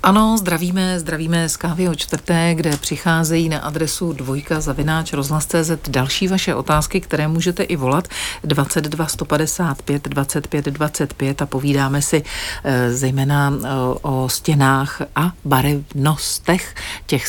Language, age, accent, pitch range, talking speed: Czech, 50-69, native, 135-160 Hz, 115 wpm